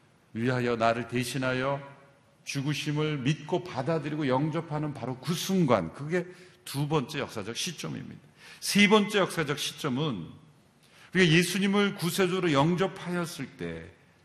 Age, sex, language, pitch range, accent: 50-69, male, Korean, 130-180 Hz, native